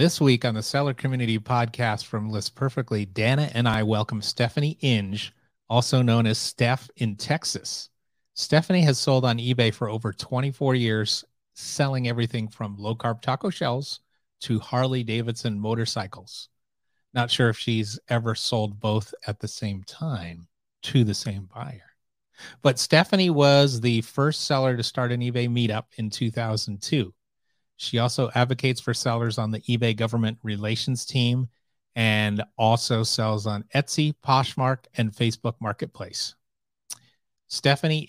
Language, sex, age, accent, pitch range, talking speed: English, male, 30-49, American, 110-130 Hz, 140 wpm